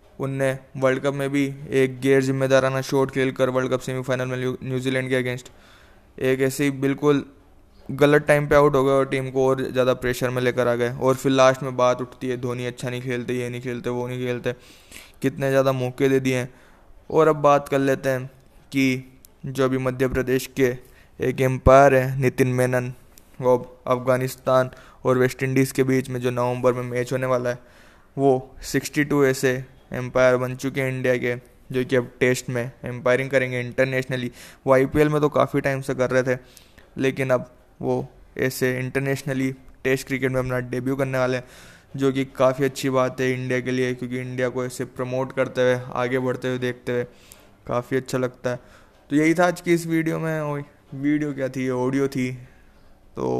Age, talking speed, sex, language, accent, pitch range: 20-39, 190 wpm, male, Hindi, native, 125-135 Hz